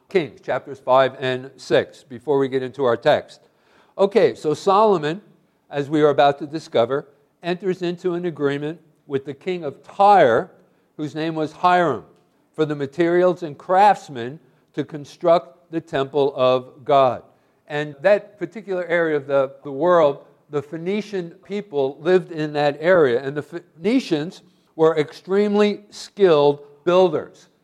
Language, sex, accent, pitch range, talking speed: English, male, American, 140-175 Hz, 145 wpm